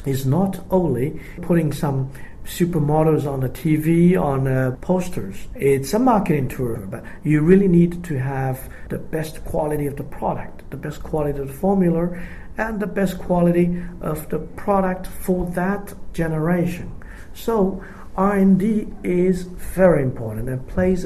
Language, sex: Chinese, male